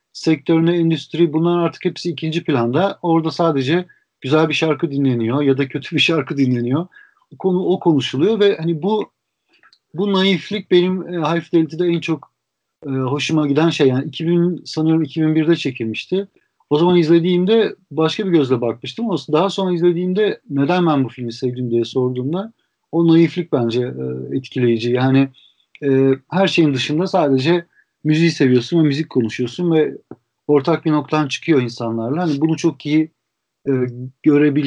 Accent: native